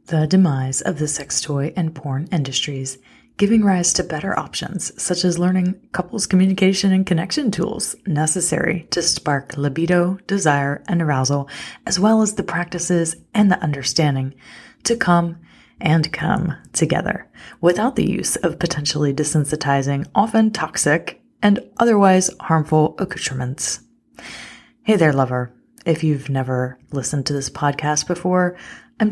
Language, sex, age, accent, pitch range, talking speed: English, female, 30-49, American, 145-185 Hz, 135 wpm